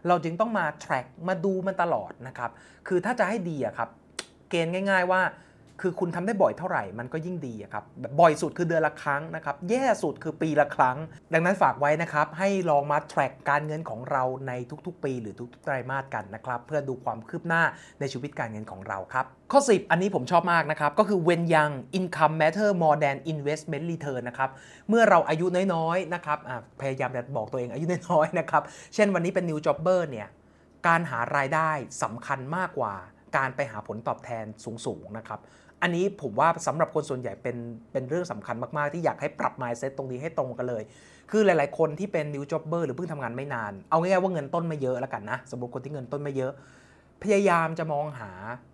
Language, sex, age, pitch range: English, male, 30-49, 130-180 Hz